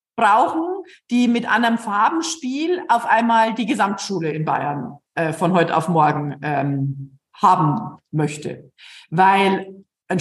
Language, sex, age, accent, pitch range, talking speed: German, female, 50-69, German, 190-255 Hz, 125 wpm